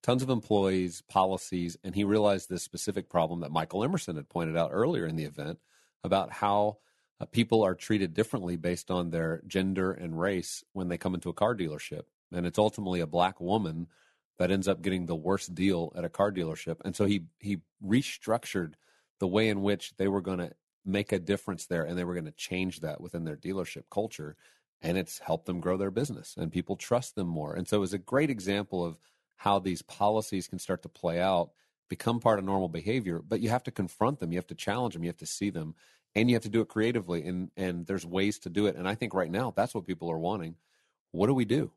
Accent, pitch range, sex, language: American, 85-105 Hz, male, English